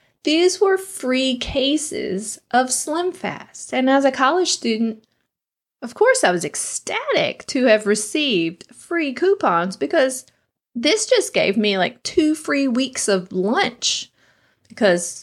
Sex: female